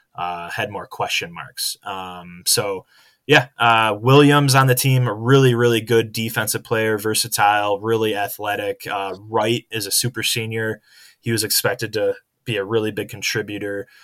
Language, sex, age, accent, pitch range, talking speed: English, male, 10-29, American, 100-120 Hz, 160 wpm